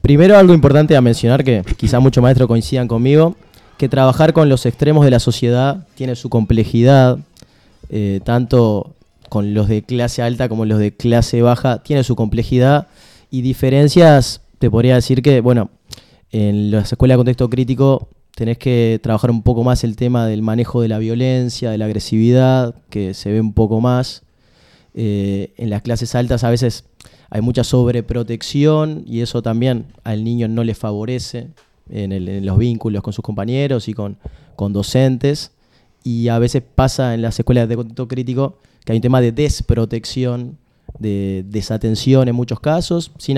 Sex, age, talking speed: male, 20-39, 170 wpm